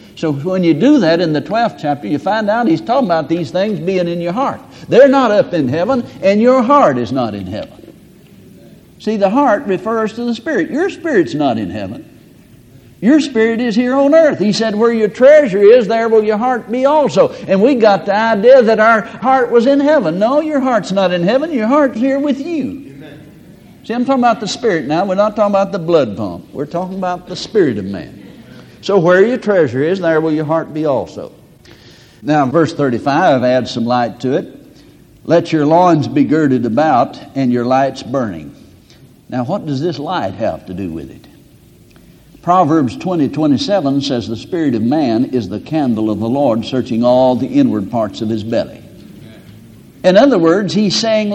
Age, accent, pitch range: 60-79, American, 155-245 Hz